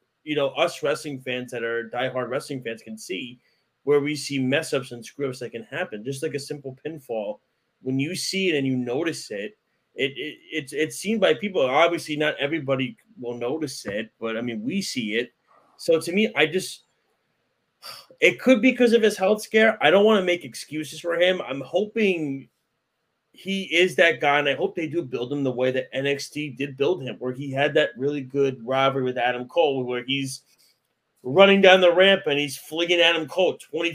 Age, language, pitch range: 30-49, English, 130-170 Hz